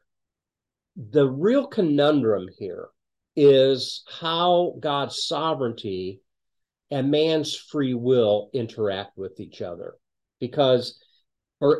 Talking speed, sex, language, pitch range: 90 wpm, male, English, 115-155 Hz